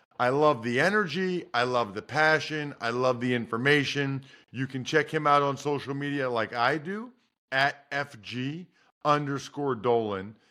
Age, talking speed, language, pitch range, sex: 40-59, 155 wpm, English, 130-180 Hz, male